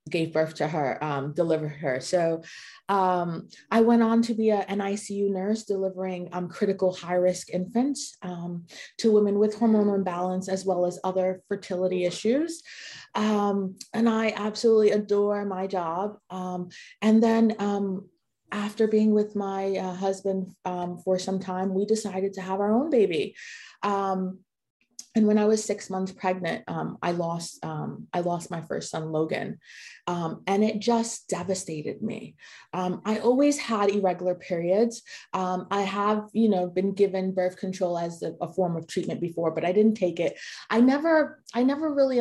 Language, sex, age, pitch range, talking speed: English, female, 20-39, 180-220 Hz, 165 wpm